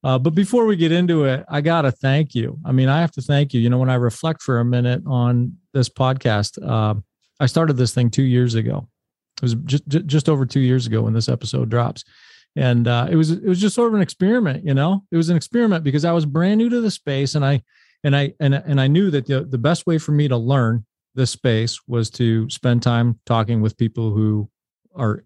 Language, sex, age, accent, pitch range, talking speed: English, male, 40-59, American, 120-150 Hz, 240 wpm